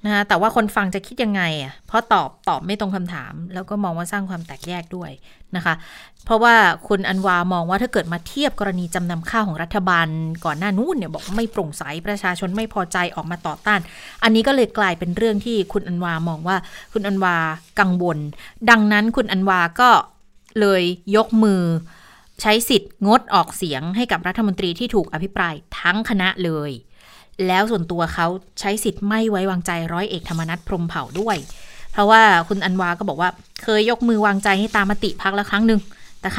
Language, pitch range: Thai, 180-220 Hz